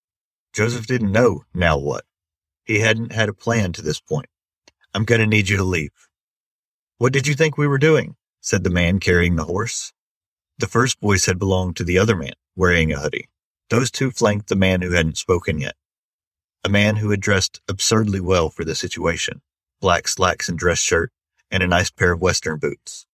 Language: English